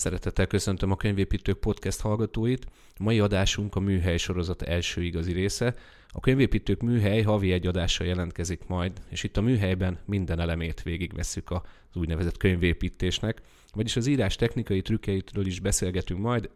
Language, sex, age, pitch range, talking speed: Hungarian, male, 30-49, 90-100 Hz, 150 wpm